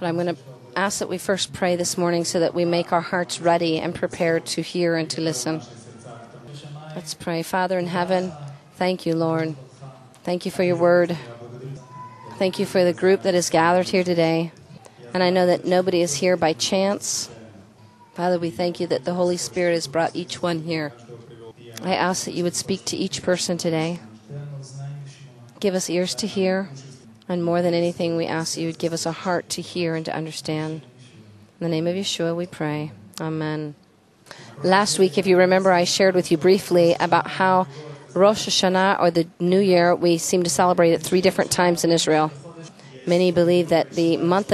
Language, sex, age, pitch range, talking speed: English, female, 40-59, 155-180 Hz, 195 wpm